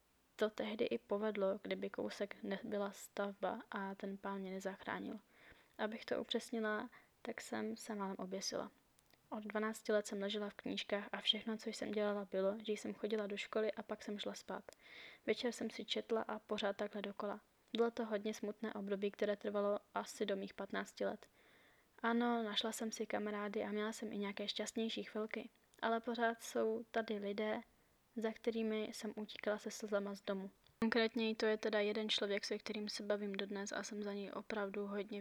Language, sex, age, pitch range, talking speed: Czech, female, 20-39, 205-225 Hz, 180 wpm